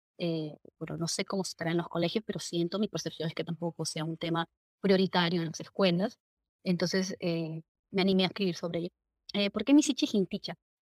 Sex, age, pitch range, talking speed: female, 20-39, 170-210 Hz, 195 wpm